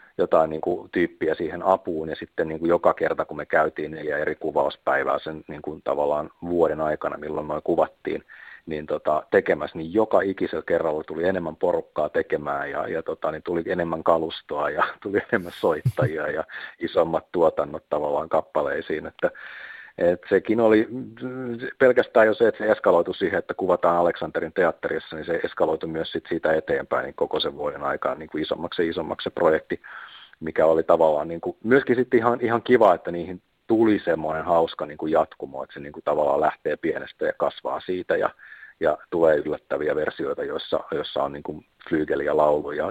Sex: male